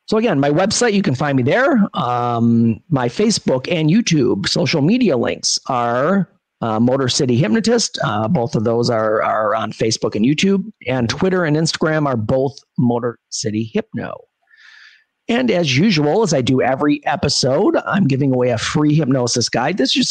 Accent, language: American, English